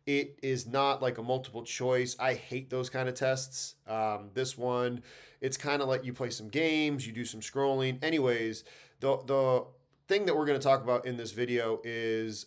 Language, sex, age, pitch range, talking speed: English, male, 30-49, 120-140 Hz, 200 wpm